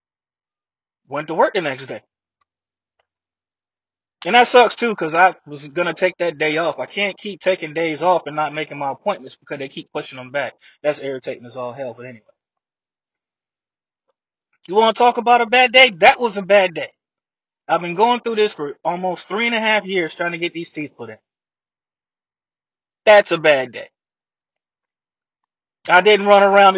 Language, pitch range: English, 150-200 Hz